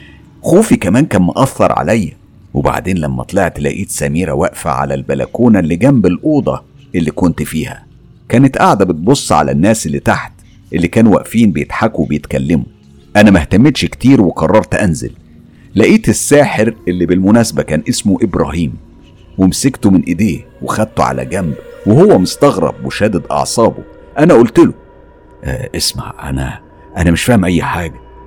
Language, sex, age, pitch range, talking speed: Arabic, male, 50-69, 80-120 Hz, 140 wpm